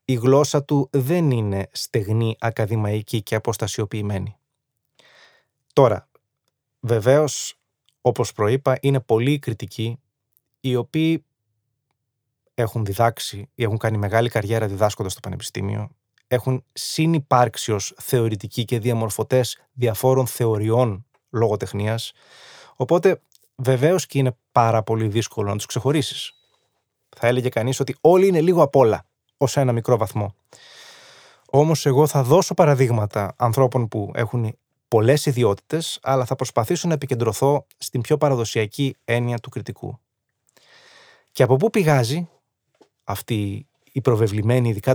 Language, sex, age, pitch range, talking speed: Greek, male, 20-39, 110-135 Hz, 115 wpm